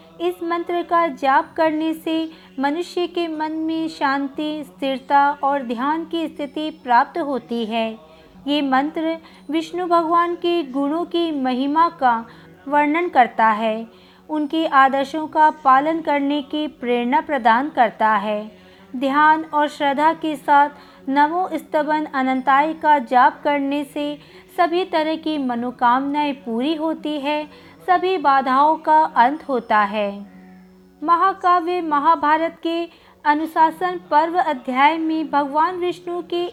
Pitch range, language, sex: 270-330 Hz, Hindi, female